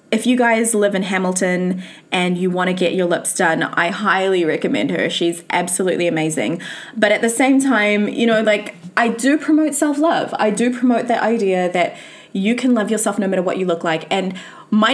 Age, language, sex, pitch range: 20-39, English, female, 190-260 Hz